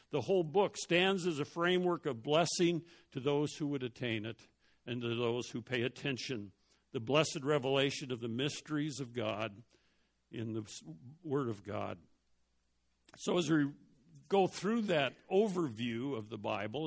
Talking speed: 155 wpm